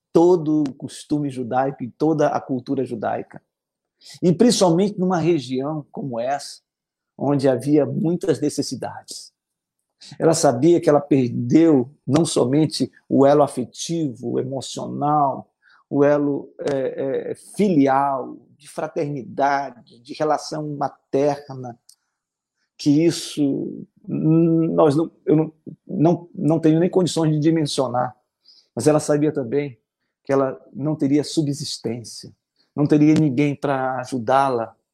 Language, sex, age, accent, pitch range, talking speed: Portuguese, male, 50-69, Brazilian, 135-160 Hz, 115 wpm